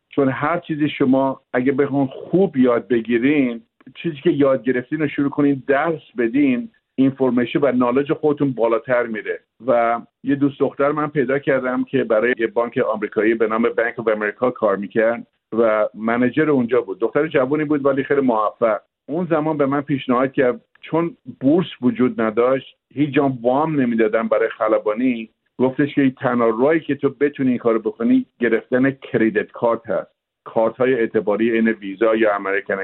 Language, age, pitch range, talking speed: Persian, 50-69, 115-140 Hz, 165 wpm